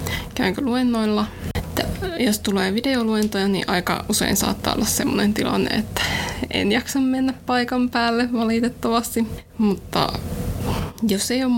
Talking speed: 125 wpm